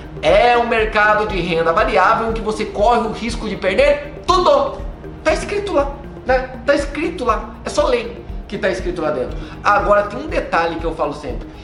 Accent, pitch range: Brazilian, 190-270 Hz